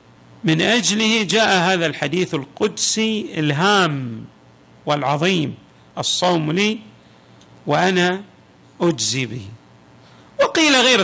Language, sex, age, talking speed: Arabic, male, 50-69, 80 wpm